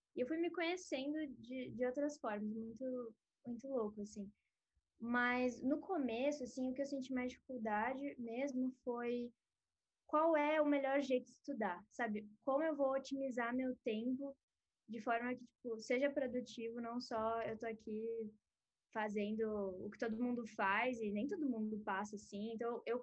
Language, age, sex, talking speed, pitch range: Portuguese, 10-29, female, 165 wpm, 220-275 Hz